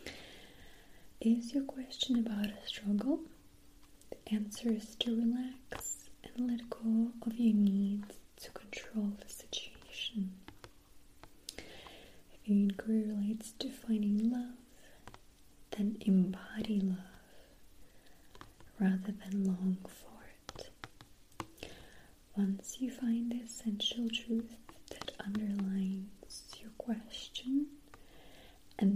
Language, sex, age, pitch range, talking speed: English, female, 30-49, 195-230 Hz, 95 wpm